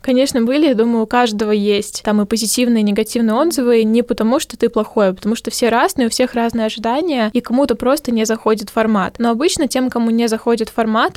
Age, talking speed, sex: 10-29, 215 wpm, female